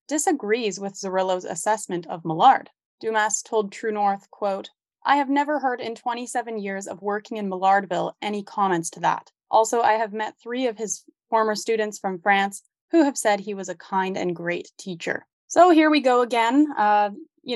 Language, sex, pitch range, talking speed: English, female, 190-230 Hz, 180 wpm